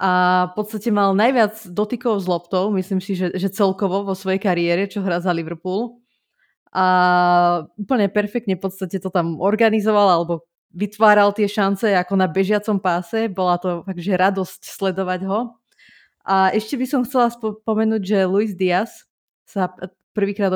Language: Slovak